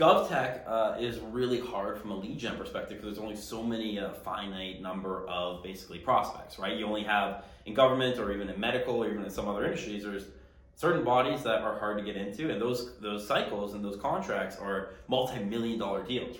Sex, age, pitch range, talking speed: male, 20-39, 100-120 Hz, 210 wpm